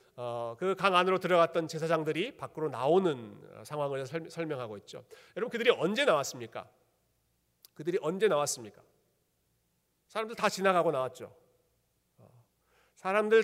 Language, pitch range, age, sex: Korean, 140-210 Hz, 40-59, male